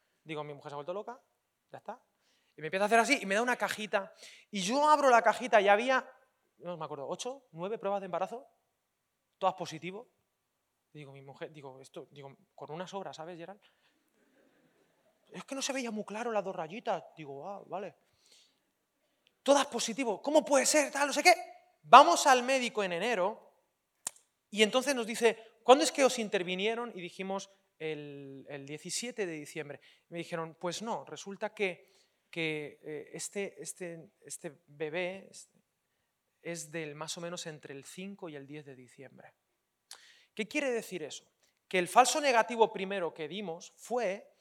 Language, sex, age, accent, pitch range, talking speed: Spanish, male, 30-49, Spanish, 165-230 Hz, 175 wpm